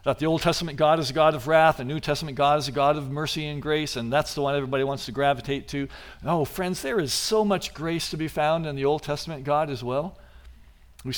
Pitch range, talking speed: 125-180 Hz, 260 wpm